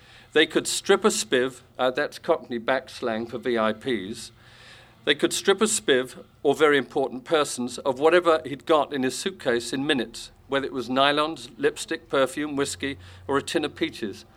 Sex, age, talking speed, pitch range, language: male, 50-69, 175 wpm, 120-160 Hz, English